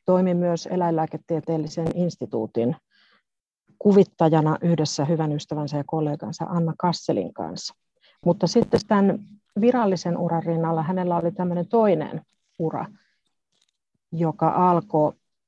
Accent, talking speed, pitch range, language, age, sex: native, 100 wpm, 160-195 Hz, Finnish, 50-69, female